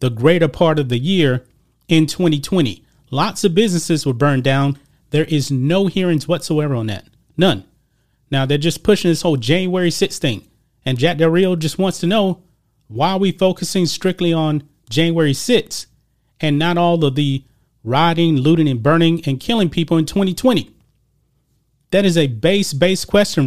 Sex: male